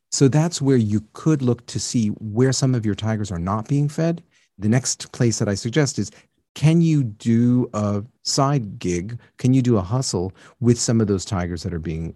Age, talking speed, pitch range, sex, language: 40-59, 210 wpm, 105-130 Hz, male, English